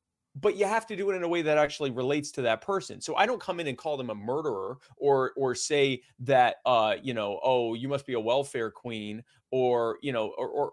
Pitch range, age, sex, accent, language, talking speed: 120-155 Hz, 30-49, male, American, English, 245 wpm